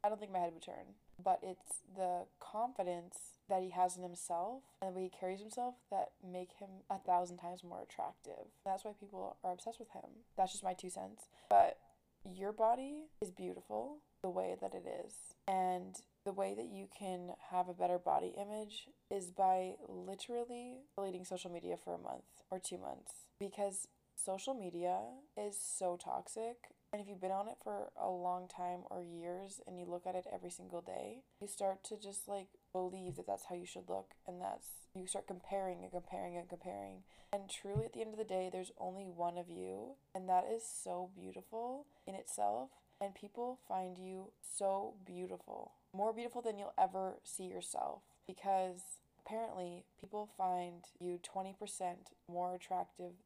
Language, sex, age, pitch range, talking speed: English, female, 20-39, 180-205 Hz, 185 wpm